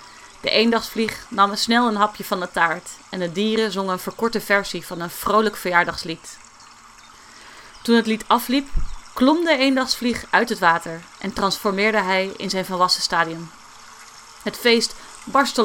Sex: female